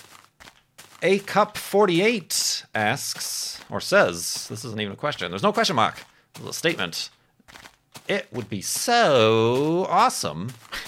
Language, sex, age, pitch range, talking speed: English, male, 40-59, 100-150 Hz, 115 wpm